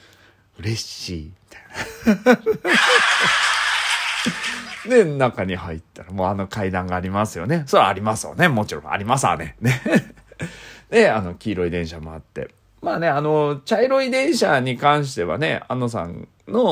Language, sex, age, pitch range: Japanese, male, 40-59, 80-105 Hz